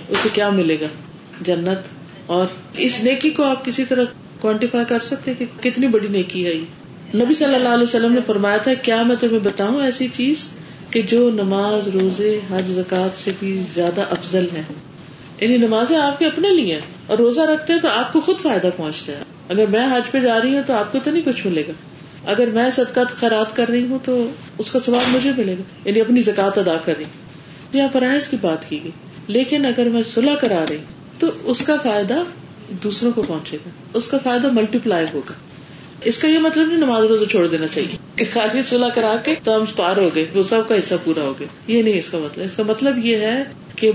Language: Urdu